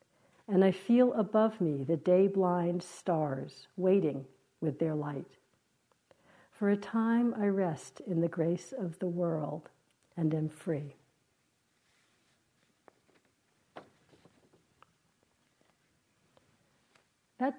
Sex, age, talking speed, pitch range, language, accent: female, 60-79, 90 wpm, 160-200 Hz, English, American